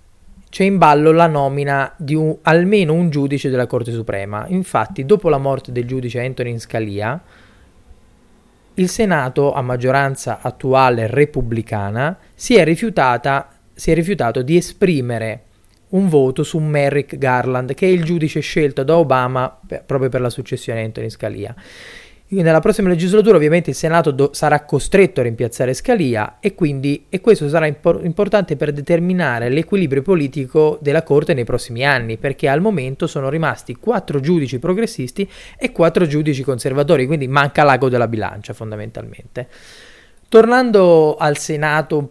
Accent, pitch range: native, 125-170 Hz